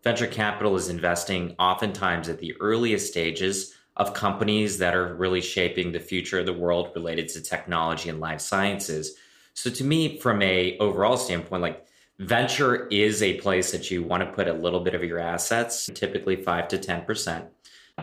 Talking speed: 175 wpm